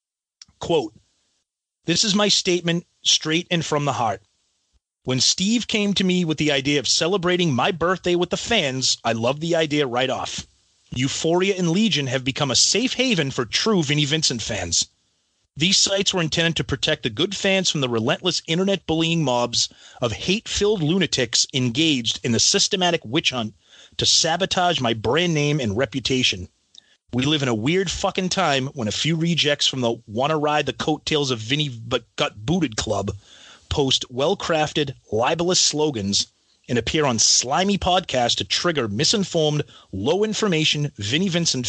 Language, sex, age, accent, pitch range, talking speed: English, male, 30-49, American, 120-175 Hz, 165 wpm